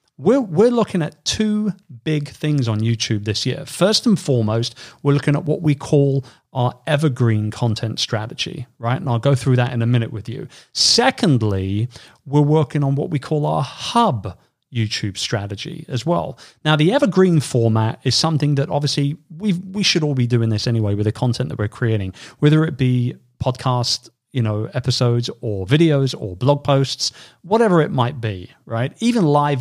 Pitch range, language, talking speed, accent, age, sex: 115-155 Hz, English, 180 wpm, British, 40-59, male